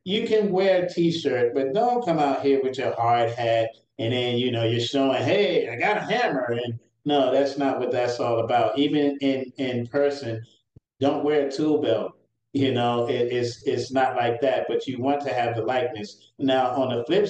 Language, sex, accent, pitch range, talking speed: English, male, American, 120-140 Hz, 210 wpm